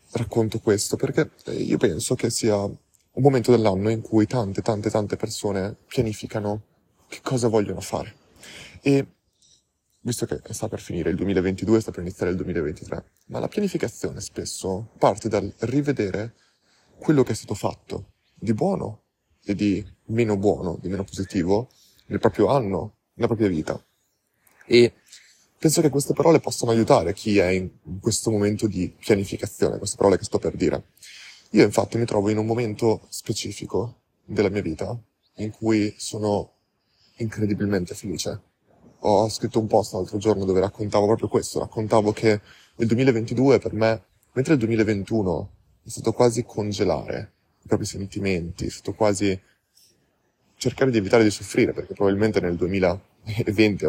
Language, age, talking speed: Italian, 20-39, 150 wpm